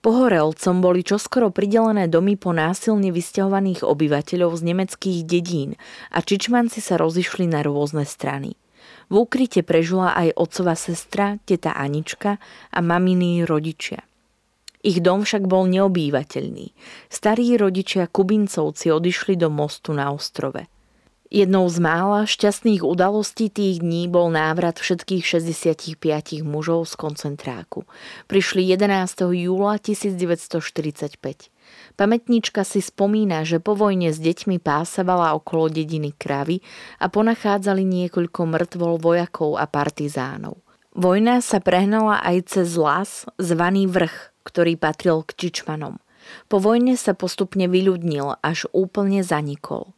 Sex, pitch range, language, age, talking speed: female, 160-200 Hz, Slovak, 30-49, 120 wpm